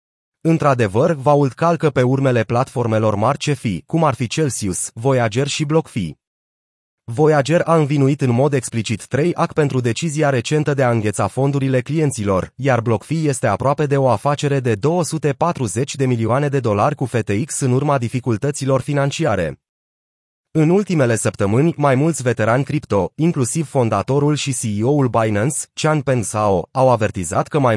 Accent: native